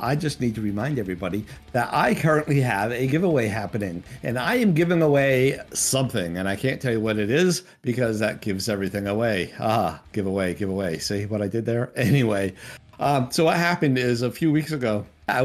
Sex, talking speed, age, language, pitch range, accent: male, 200 wpm, 50-69, English, 105-145 Hz, American